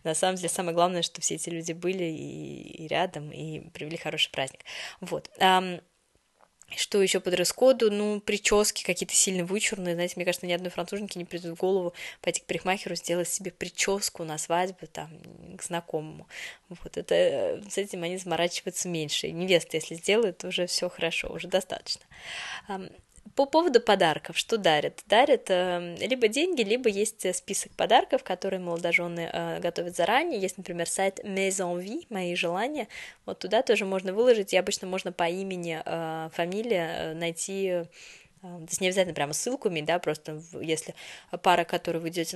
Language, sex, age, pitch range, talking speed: Russian, female, 20-39, 170-195 Hz, 160 wpm